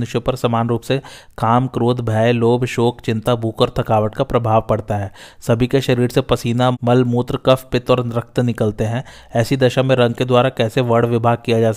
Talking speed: 195 wpm